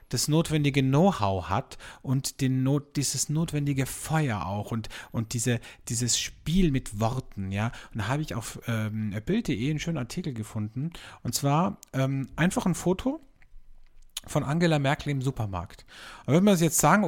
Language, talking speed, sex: German, 160 wpm, male